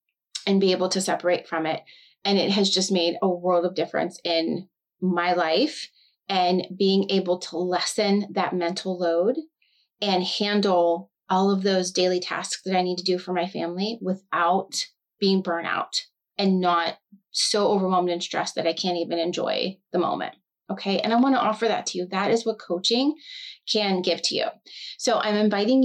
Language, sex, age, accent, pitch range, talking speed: English, female, 30-49, American, 180-210 Hz, 180 wpm